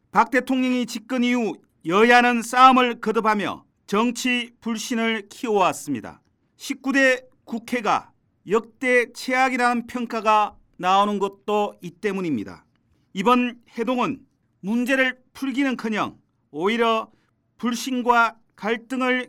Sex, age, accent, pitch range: male, 40-59, native, 210-250 Hz